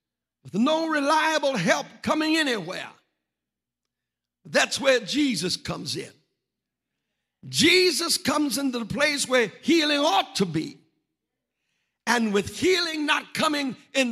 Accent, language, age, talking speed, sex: American, English, 60-79, 115 wpm, male